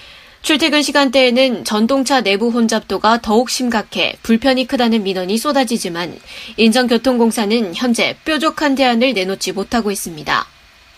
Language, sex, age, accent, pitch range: Korean, female, 20-39, native, 205-260 Hz